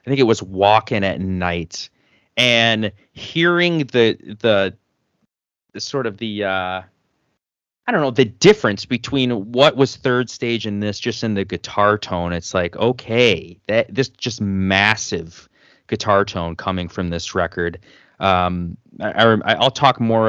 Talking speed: 155 wpm